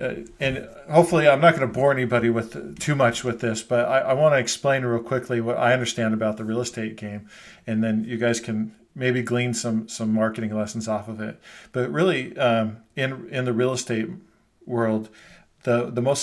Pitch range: 110-130 Hz